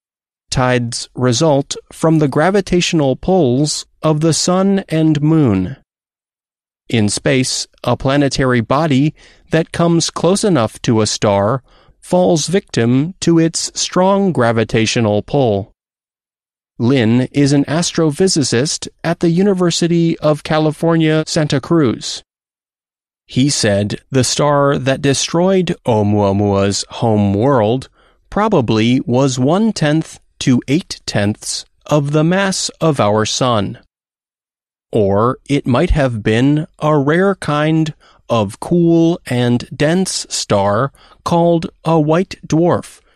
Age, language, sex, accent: 30-49, Chinese, male, American